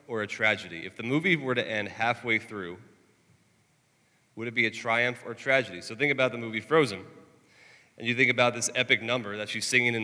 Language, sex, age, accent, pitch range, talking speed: English, male, 30-49, American, 105-130 Hz, 210 wpm